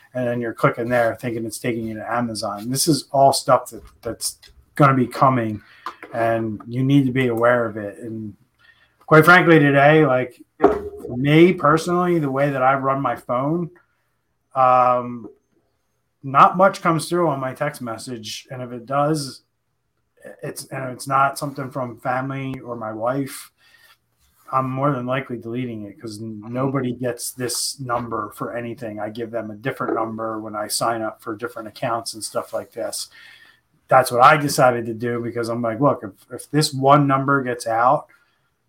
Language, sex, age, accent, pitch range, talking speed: English, male, 30-49, American, 115-135 Hz, 175 wpm